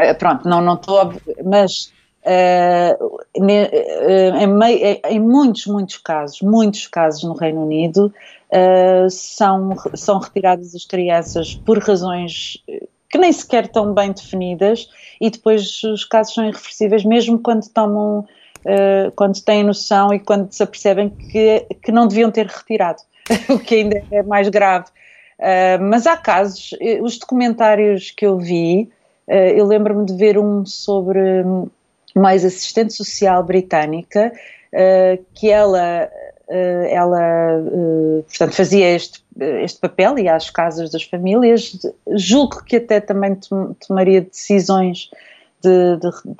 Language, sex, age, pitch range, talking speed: Portuguese, female, 30-49, 185-220 Hz, 125 wpm